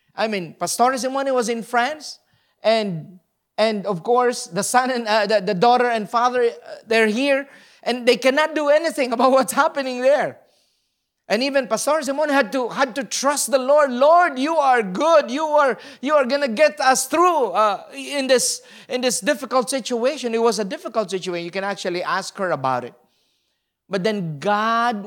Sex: male